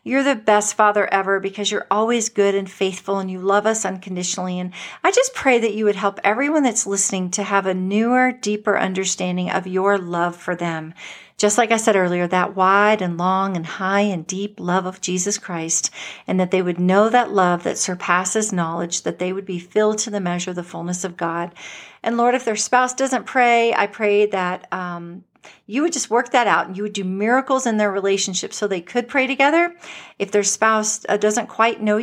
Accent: American